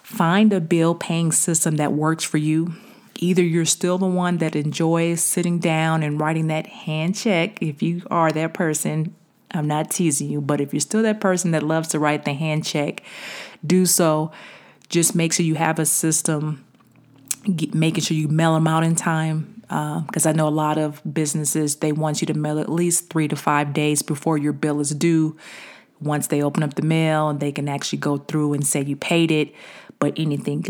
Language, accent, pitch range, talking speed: English, American, 150-170 Hz, 205 wpm